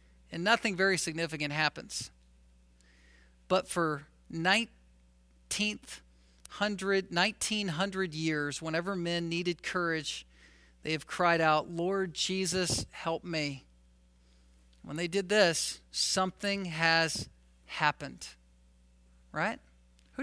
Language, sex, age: English, male, 50-69